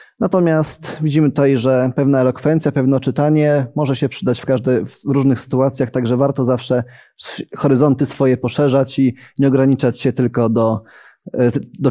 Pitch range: 125-145 Hz